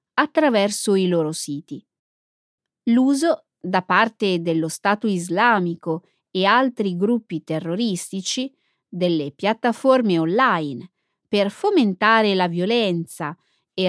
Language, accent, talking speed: Italian, native, 95 wpm